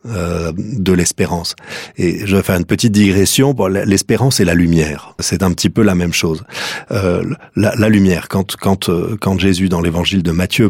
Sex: male